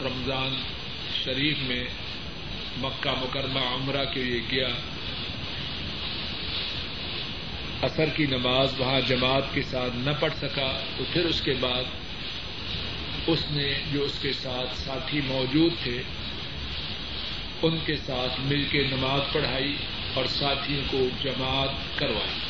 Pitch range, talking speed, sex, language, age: 125-145 Hz, 120 wpm, male, Urdu, 50-69